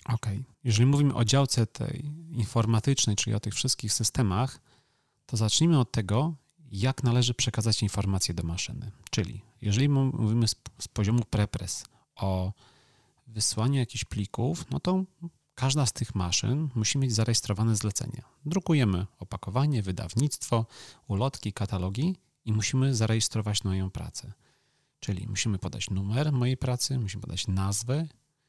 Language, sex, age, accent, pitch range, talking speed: Polish, male, 40-59, native, 105-130 Hz, 130 wpm